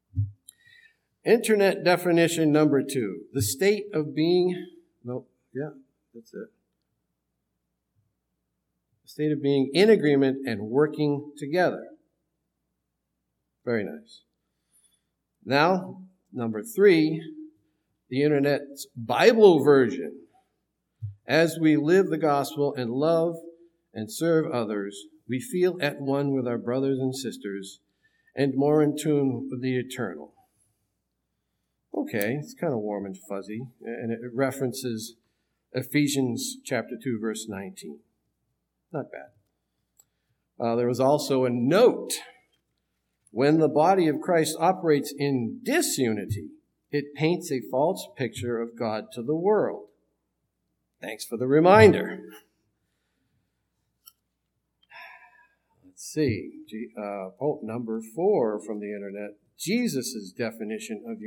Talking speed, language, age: 115 wpm, English, 50-69